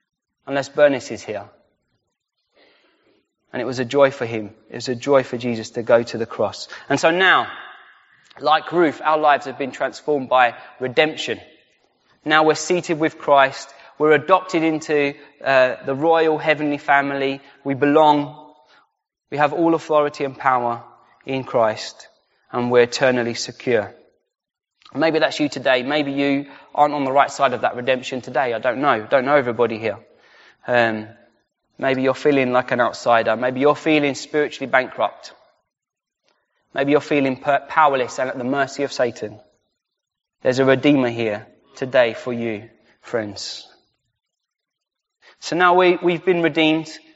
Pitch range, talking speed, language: 125-155 Hz, 150 wpm, English